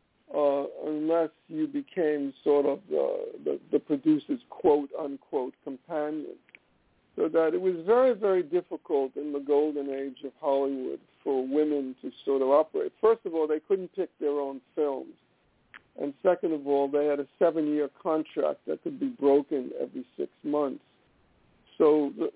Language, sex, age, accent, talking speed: English, male, 60-79, American, 150 wpm